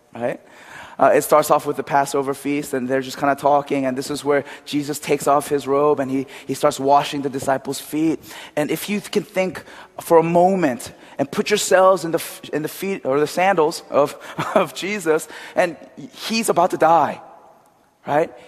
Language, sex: Korean, male